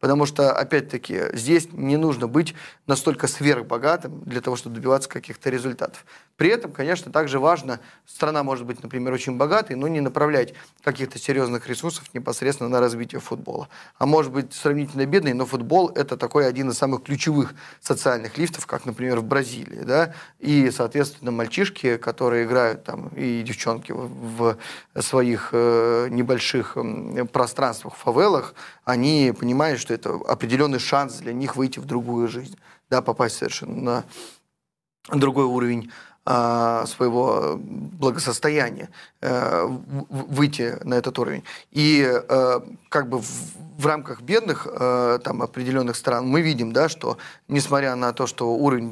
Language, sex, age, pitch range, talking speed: Russian, male, 20-39, 120-145 Hz, 140 wpm